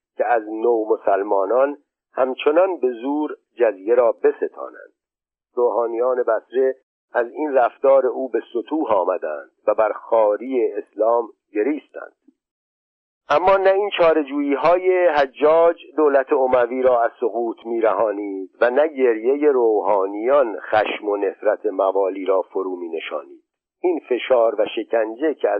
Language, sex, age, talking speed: Persian, male, 50-69, 125 wpm